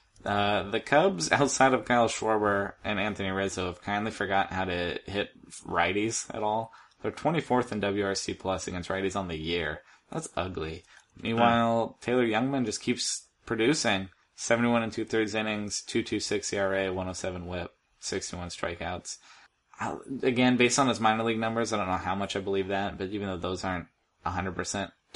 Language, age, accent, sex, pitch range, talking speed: English, 20-39, American, male, 95-120 Hz, 165 wpm